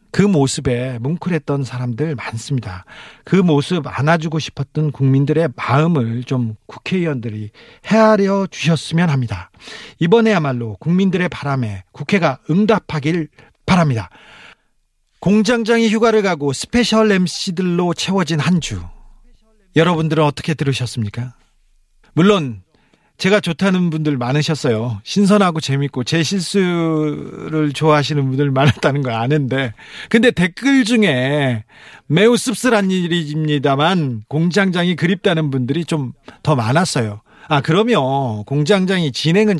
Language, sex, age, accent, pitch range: Korean, male, 40-59, native, 125-180 Hz